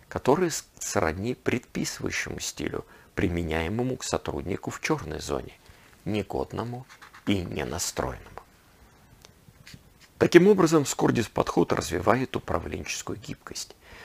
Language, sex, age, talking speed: Russian, male, 50-69, 85 wpm